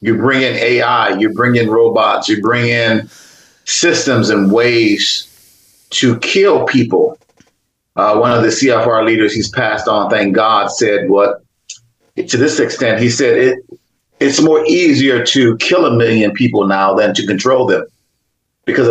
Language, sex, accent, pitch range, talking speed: English, male, American, 115-155 Hz, 160 wpm